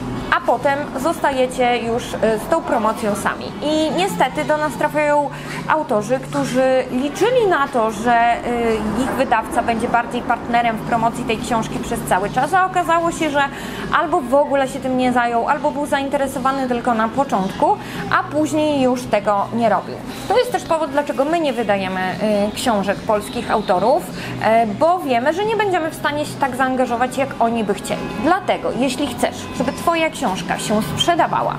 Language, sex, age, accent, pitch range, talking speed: Polish, female, 20-39, native, 225-300 Hz, 165 wpm